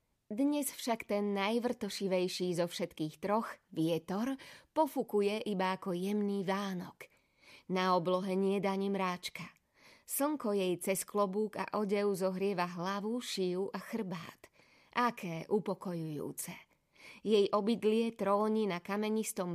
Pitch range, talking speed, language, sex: 185-225 Hz, 105 wpm, Slovak, female